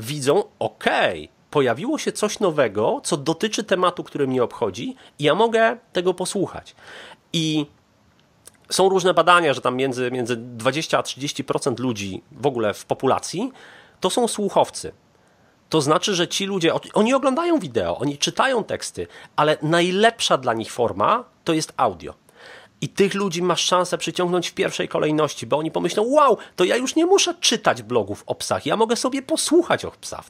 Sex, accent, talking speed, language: male, native, 165 wpm, Polish